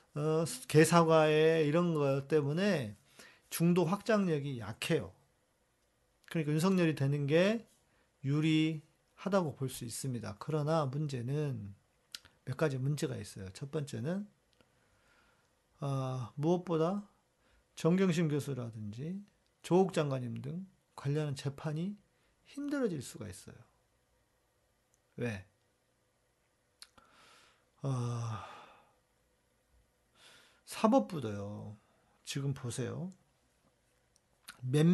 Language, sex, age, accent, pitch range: Korean, male, 40-59, native, 125-180 Hz